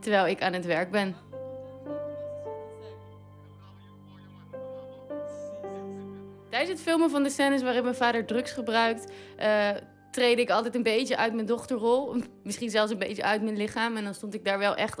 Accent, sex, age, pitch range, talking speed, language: Dutch, female, 20-39, 185-230 Hz, 160 wpm, Dutch